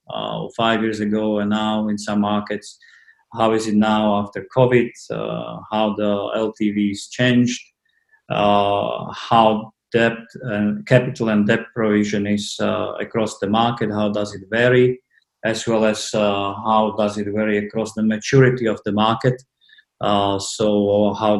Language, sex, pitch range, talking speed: English, male, 105-120 Hz, 150 wpm